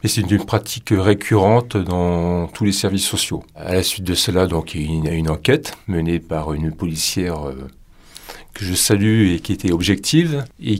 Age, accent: 40-59, French